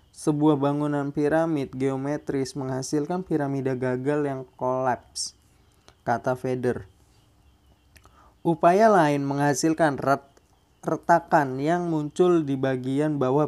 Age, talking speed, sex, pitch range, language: 20-39, 90 wpm, male, 130-155 Hz, Indonesian